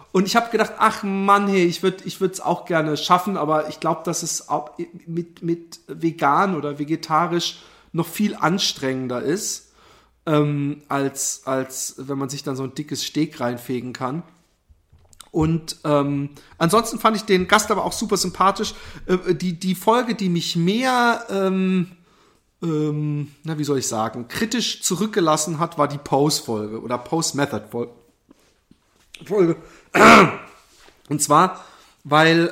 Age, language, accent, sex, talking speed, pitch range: 40-59, German, German, male, 145 wpm, 145-185 Hz